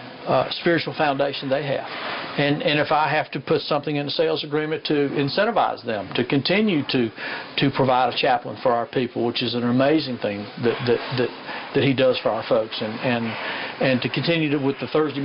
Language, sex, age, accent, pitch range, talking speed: English, male, 50-69, American, 130-150 Hz, 210 wpm